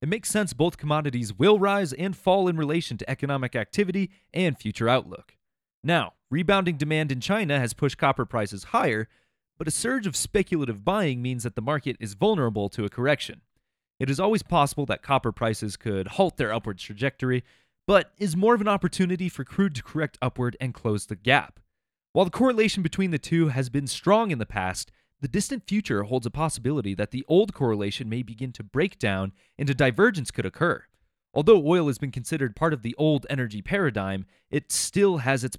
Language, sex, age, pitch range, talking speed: English, male, 30-49, 115-165 Hz, 195 wpm